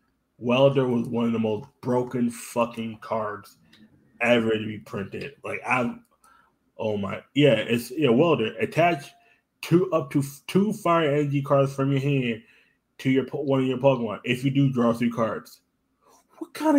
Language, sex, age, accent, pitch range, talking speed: English, male, 20-39, American, 115-150 Hz, 165 wpm